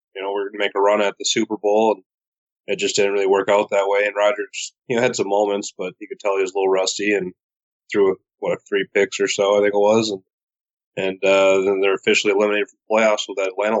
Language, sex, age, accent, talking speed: English, male, 20-39, American, 275 wpm